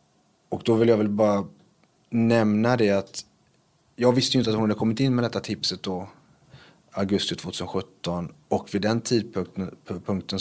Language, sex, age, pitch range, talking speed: Swedish, male, 30-49, 95-110 Hz, 165 wpm